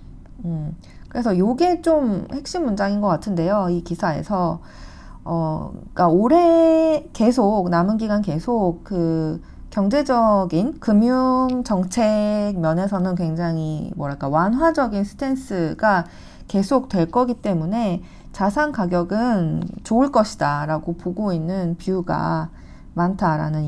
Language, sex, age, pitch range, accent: Korean, female, 40-59, 165-240 Hz, native